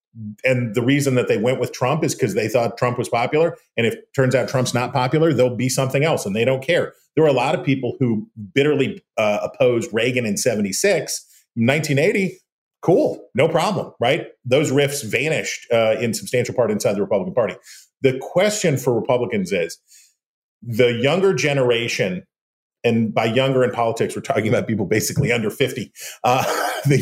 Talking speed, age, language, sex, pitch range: 185 wpm, 40-59, English, male, 110-130 Hz